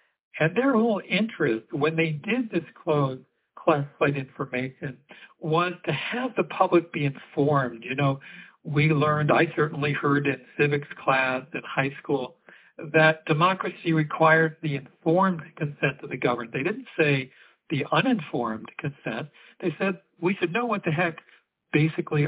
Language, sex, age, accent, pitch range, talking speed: English, male, 60-79, American, 140-170 Hz, 145 wpm